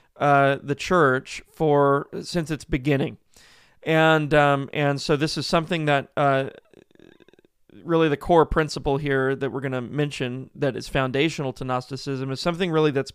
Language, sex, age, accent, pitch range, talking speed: English, male, 30-49, American, 135-170 Hz, 160 wpm